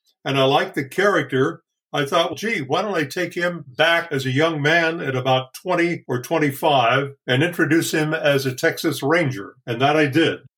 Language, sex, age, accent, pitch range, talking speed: English, male, 50-69, American, 135-160 Hz, 195 wpm